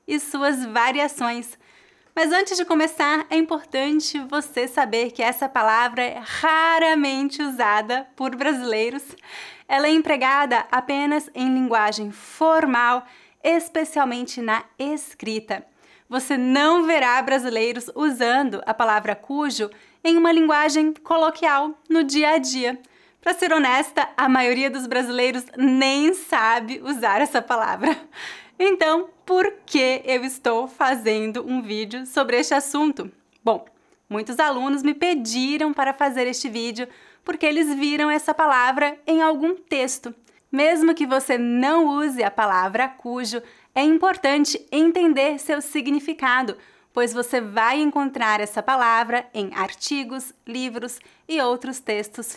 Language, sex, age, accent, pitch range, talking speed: English, female, 20-39, Brazilian, 245-310 Hz, 125 wpm